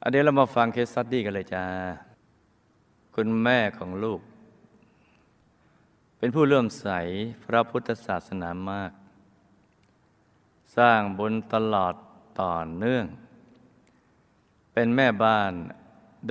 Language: Thai